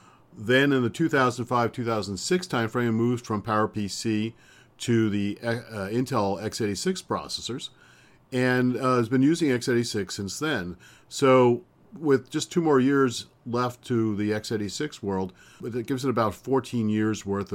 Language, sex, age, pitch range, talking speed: English, male, 50-69, 95-120 Hz, 145 wpm